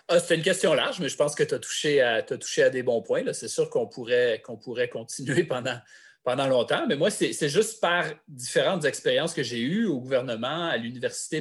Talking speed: 225 wpm